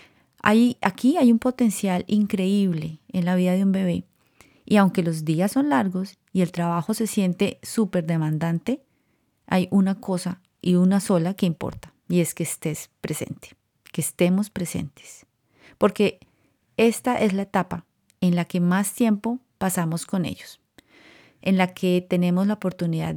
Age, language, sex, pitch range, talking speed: 30-49, Spanish, female, 170-200 Hz, 155 wpm